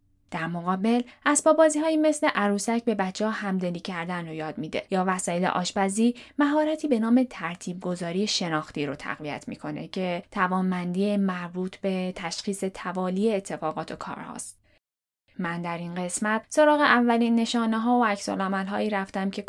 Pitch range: 185-240 Hz